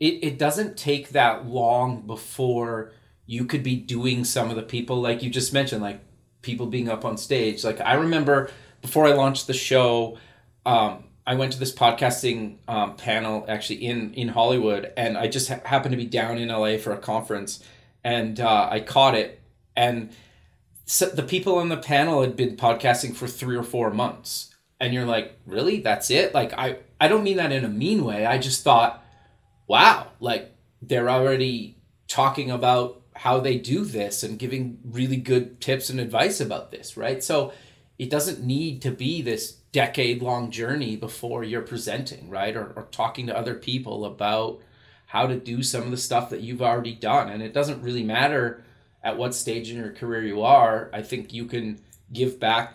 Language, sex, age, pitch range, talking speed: English, male, 30-49, 115-135 Hz, 190 wpm